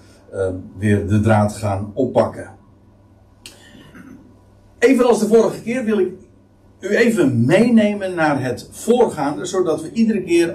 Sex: male